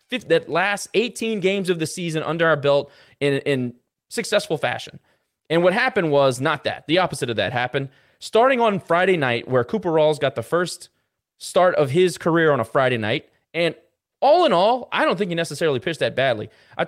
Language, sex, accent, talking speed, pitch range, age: English, male, American, 200 wpm, 140-195 Hz, 20-39